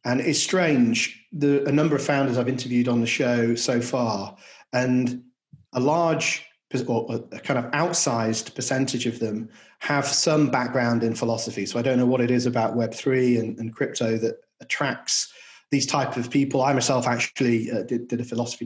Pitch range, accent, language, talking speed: 115-140 Hz, British, English, 185 wpm